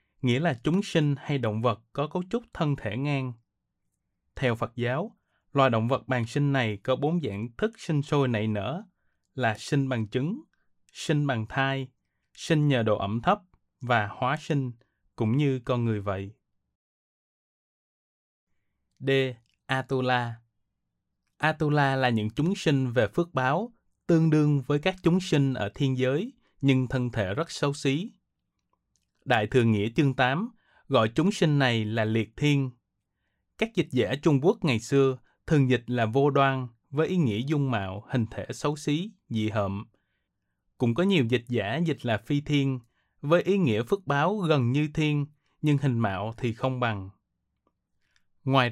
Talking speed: 165 wpm